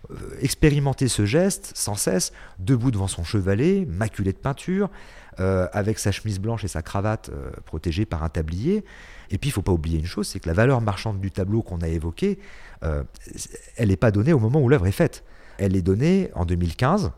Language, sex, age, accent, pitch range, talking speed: French, male, 40-59, French, 90-120 Hz, 210 wpm